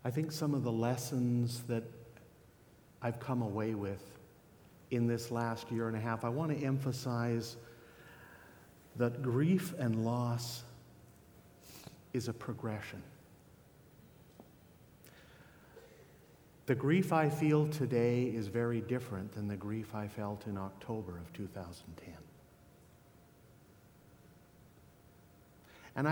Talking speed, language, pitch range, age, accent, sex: 110 wpm, English, 115-140 Hz, 50-69, American, male